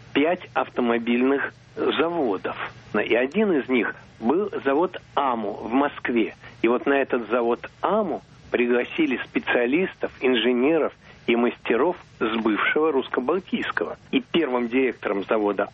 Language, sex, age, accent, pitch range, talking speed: Russian, male, 60-79, native, 125-155 Hz, 115 wpm